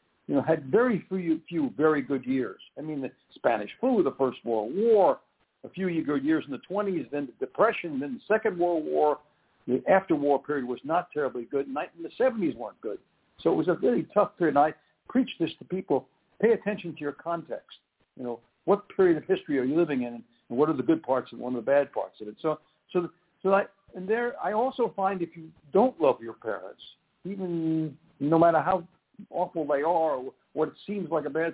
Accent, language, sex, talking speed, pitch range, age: American, English, male, 215 wpm, 140-195 Hz, 60-79